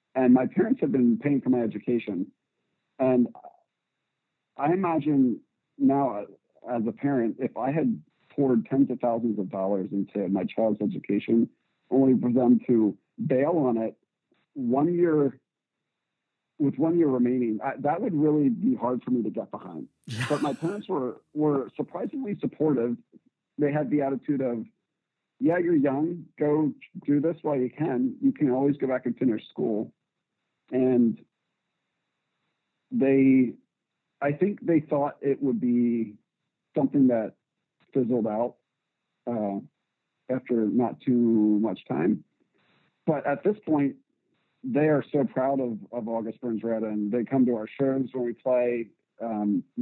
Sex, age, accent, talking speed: male, 50-69, American, 150 wpm